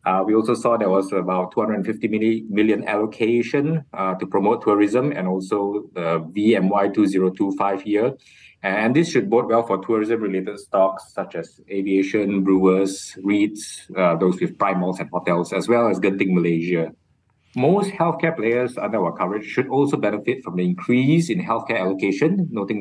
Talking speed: 160 wpm